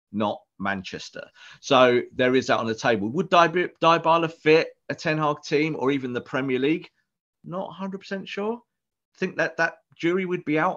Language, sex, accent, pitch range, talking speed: English, male, British, 115-160 Hz, 180 wpm